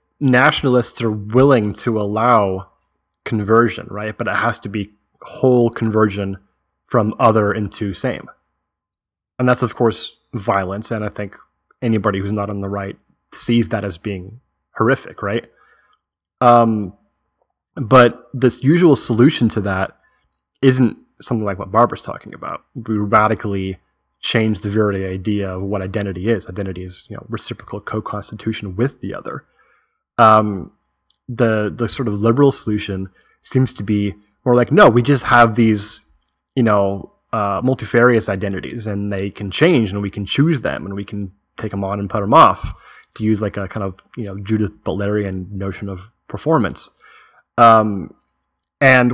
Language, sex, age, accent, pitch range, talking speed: English, male, 20-39, American, 100-120 Hz, 155 wpm